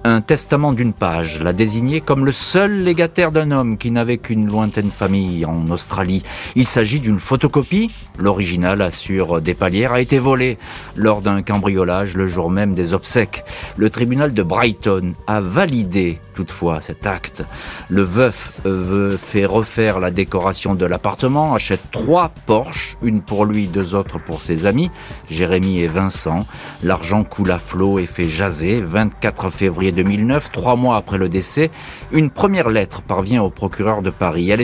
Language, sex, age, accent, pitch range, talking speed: French, male, 40-59, French, 95-125 Hz, 165 wpm